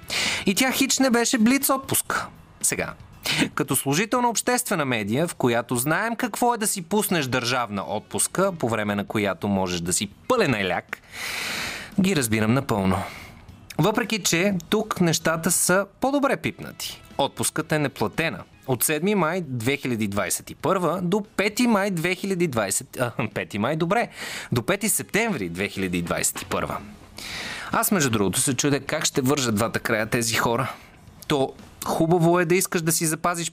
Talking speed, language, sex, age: 145 wpm, Bulgarian, male, 30-49